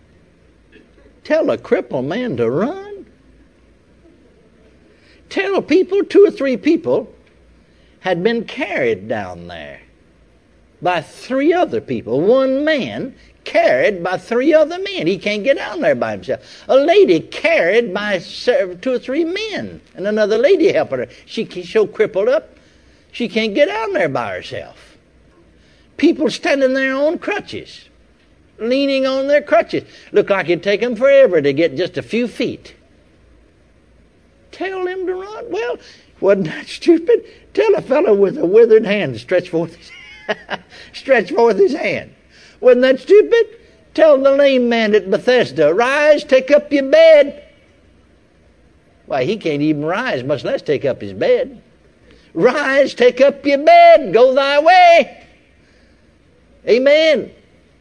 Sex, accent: male, American